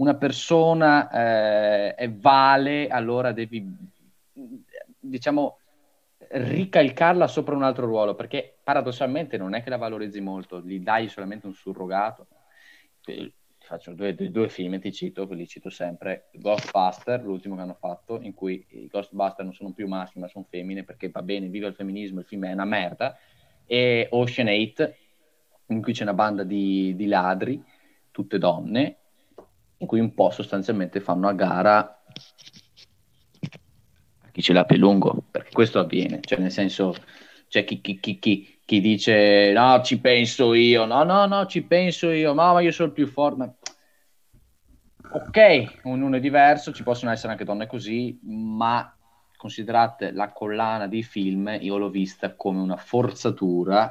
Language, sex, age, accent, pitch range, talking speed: Italian, male, 20-39, native, 100-125 Hz, 160 wpm